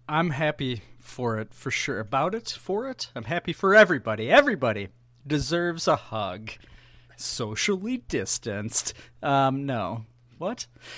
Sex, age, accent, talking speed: male, 30-49, American, 125 wpm